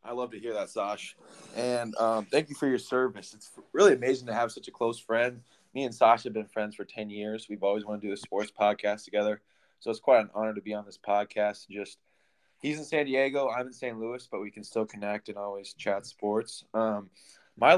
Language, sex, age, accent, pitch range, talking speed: English, male, 20-39, American, 105-120 Hz, 235 wpm